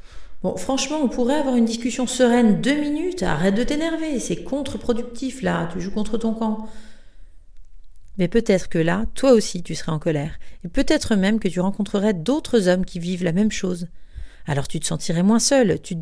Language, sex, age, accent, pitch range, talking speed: French, female, 40-59, French, 180-240 Hz, 195 wpm